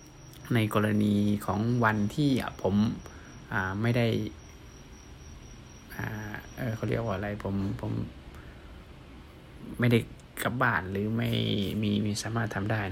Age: 20-39